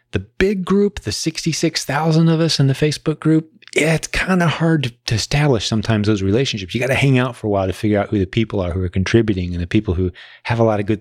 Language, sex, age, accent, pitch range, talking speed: English, male, 30-49, American, 95-125 Hz, 255 wpm